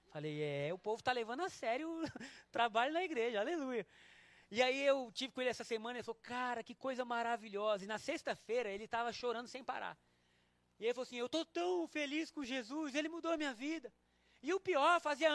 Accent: Brazilian